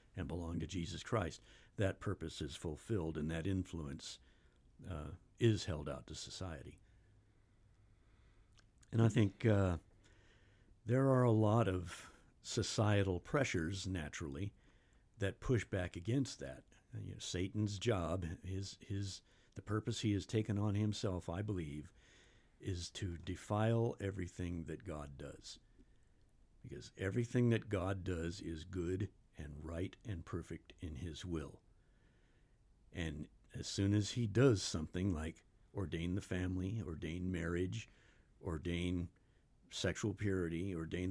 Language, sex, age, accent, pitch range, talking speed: English, male, 60-79, American, 85-105 Hz, 130 wpm